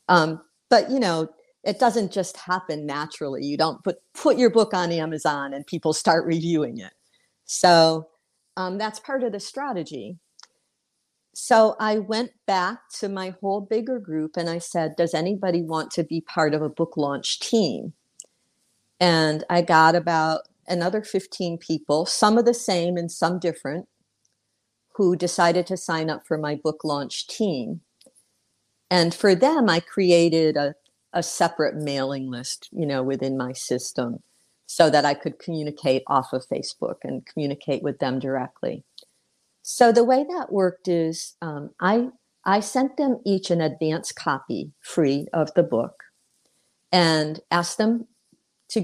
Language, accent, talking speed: English, American, 155 wpm